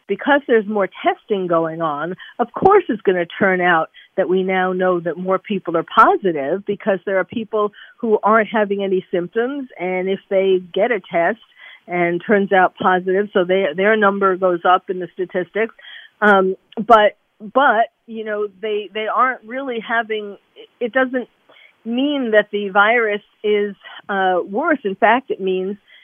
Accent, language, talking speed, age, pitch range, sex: American, English, 170 wpm, 50-69, 185-230 Hz, female